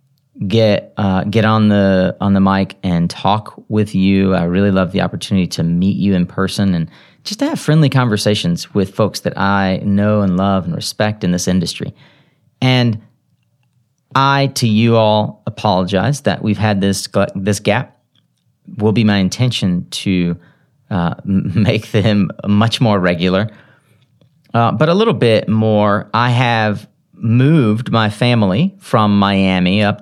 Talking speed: 155 wpm